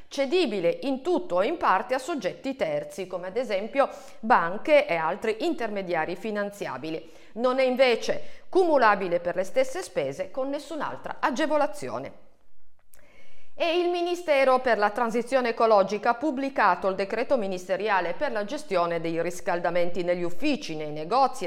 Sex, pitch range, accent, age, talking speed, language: female, 180-255 Hz, native, 50-69, 135 wpm, Italian